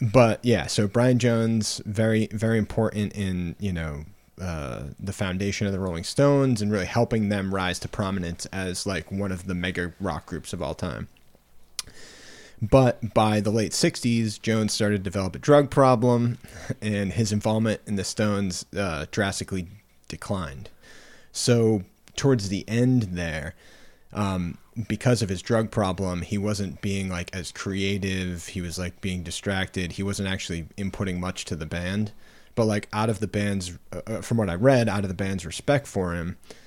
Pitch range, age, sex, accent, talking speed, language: 90-110 Hz, 30-49, male, American, 170 wpm, English